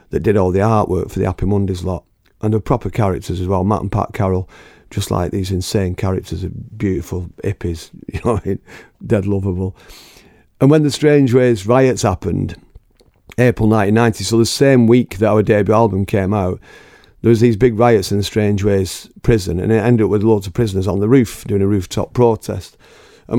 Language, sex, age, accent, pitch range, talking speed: English, male, 40-59, British, 95-115 Hz, 195 wpm